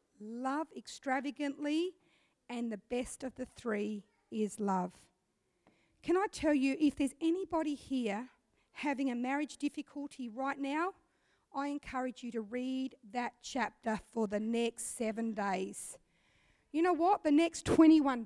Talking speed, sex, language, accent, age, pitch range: 140 wpm, female, English, Australian, 40-59, 230-325 Hz